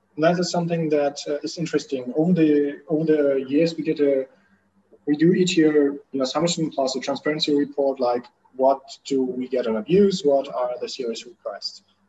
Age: 30-49